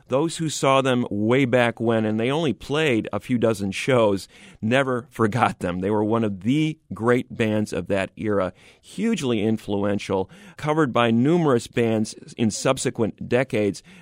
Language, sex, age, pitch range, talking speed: English, male, 40-59, 105-135 Hz, 160 wpm